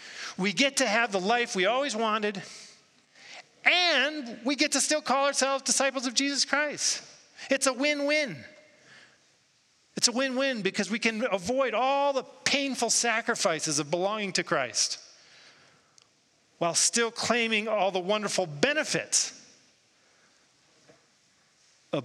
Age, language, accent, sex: 40-59, English, American, male